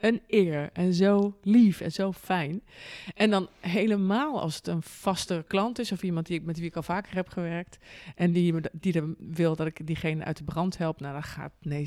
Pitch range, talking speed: 155-180 Hz, 225 wpm